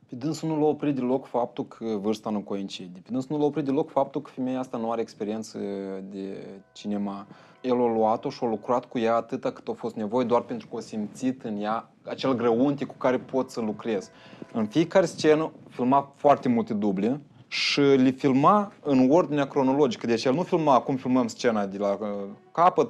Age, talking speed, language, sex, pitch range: 20-39, 195 wpm, Romanian, male, 125-160 Hz